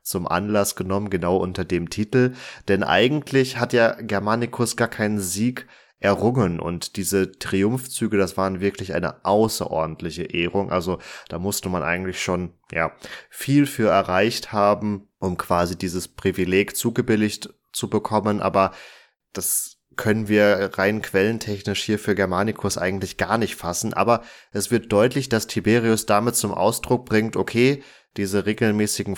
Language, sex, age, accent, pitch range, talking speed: German, male, 20-39, German, 95-110 Hz, 140 wpm